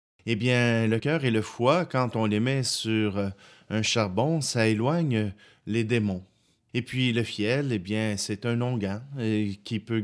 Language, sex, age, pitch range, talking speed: French, male, 30-49, 105-135 Hz, 175 wpm